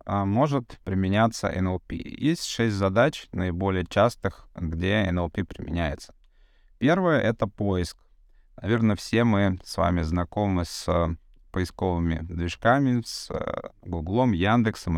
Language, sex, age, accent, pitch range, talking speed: Russian, male, 20-39, native, 90-110 Hz, 105 wpm